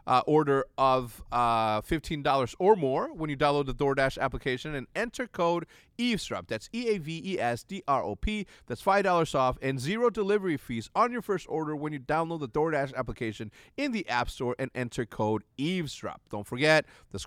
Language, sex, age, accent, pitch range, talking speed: English, male, 30-49, American, 115-160 Hz, 165 wpm